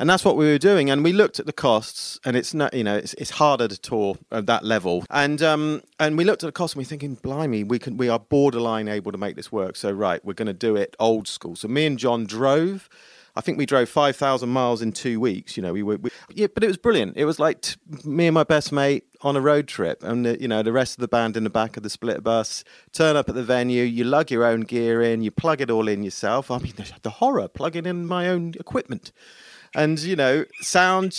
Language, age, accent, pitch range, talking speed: English, 40-59, British, 115-165 Hz, 270 wpm